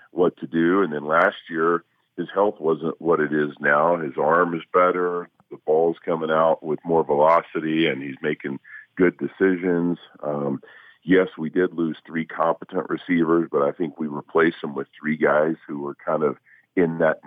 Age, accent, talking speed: 50-69, American, 185 wpm